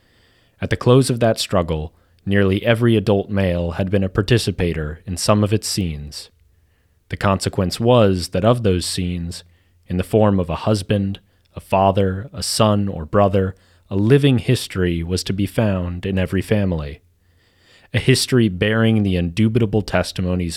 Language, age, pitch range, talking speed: English, 30-49, 85-105 Hz, 160 wpm